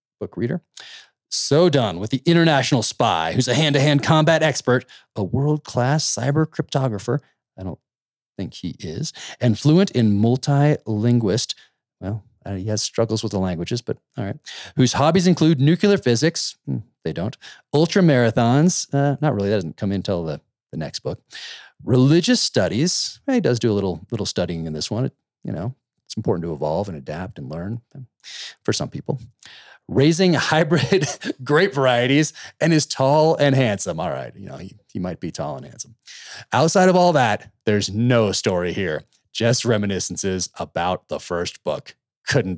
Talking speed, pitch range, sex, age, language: 170 wpm, 105-155 Hz, male, 30-49, English